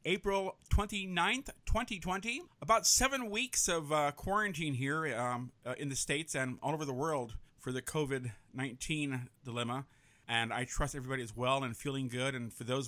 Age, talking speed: 50-69, 170 wpm